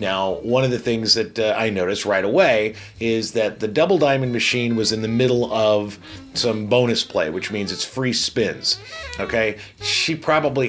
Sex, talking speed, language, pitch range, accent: male, 185 wpm, English, 105-135 Hz, American